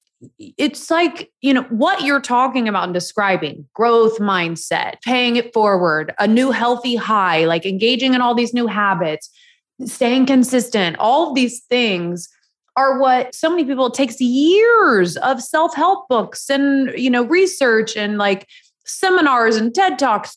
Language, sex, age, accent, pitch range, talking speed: English, female, 20-39, American, 190-260 Hz, 155 wpm